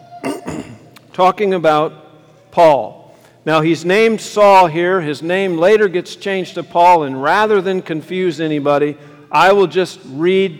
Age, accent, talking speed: 50-69, American, 135 wpm